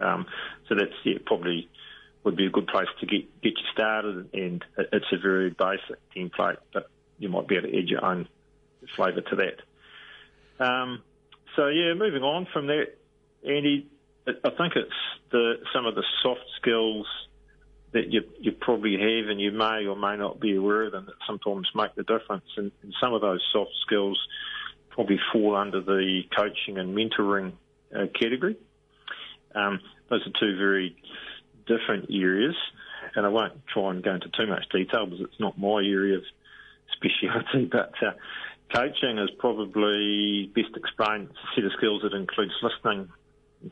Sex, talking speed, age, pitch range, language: male, 170 wpm, 40-59, 95-110 Hz, English